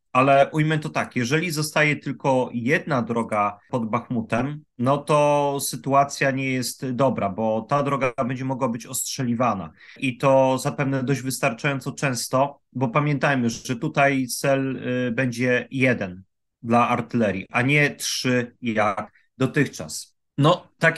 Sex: male